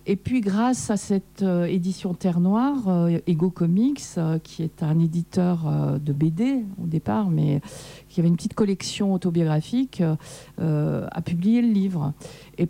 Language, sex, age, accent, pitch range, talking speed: French, female, 50-69, French, 160-200 Hz, 165 wpm